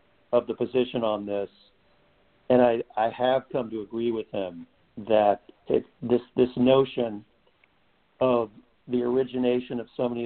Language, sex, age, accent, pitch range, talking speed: English, male, 50-69, American, 110-125 Hz, 140 wpm